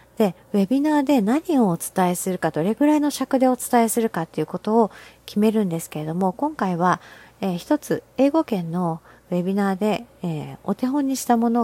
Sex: female